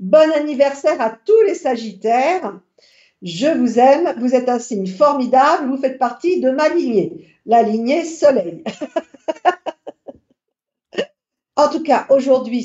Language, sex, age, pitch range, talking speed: French, female, 50-69, 215-290 Hz, 130 wpm